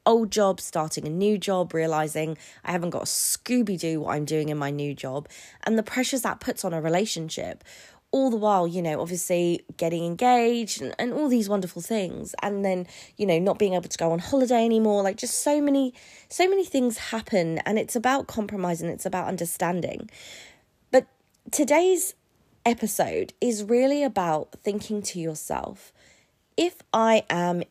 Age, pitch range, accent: 20-39, 170-230 Hz, British